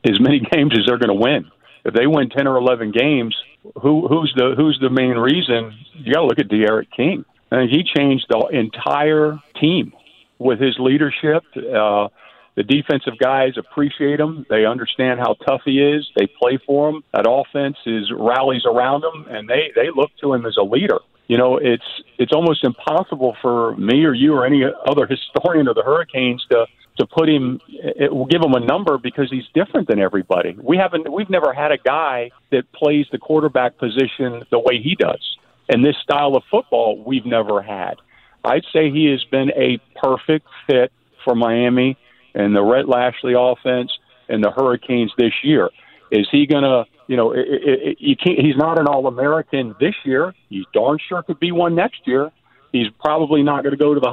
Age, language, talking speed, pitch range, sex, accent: 50-69, English, 200 wpm, 125-150 Hz, male, American